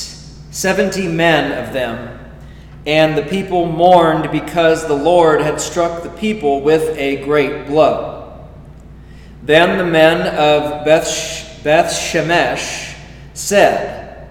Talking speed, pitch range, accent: 110 wpm, 150-175 Hz, American